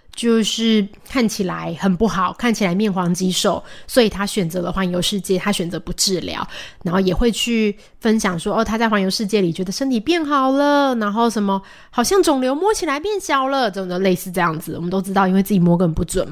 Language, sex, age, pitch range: Chinese, female, 20-39, 190-240 Hz